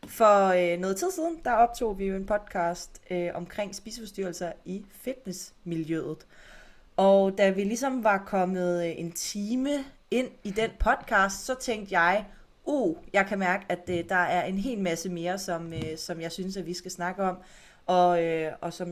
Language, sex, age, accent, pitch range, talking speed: Danish, female, 30-49, native, 175-220 Hz, 185 wpm